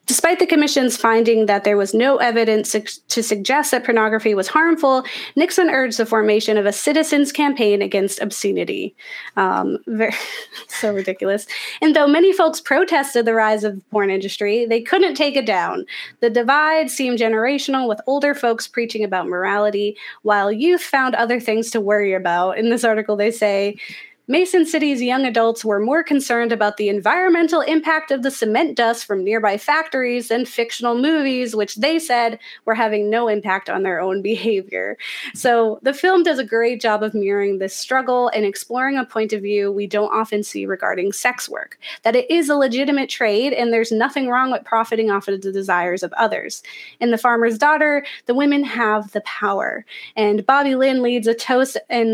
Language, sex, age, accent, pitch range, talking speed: English, female, 20-39, American, 210-275 Hz, 180 wpm